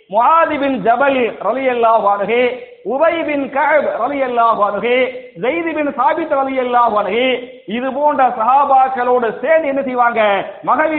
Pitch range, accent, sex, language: 255-315 Hz, Indian, male, English